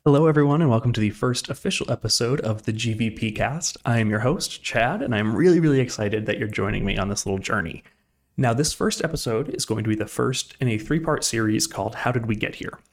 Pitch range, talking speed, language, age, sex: 110-135 Hz, 240 wpm, English, 30-49, male